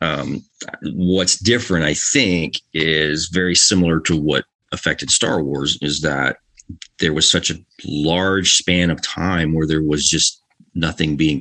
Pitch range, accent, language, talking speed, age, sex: 75-90 Hz, American, English, 155 wpm, 30-49, male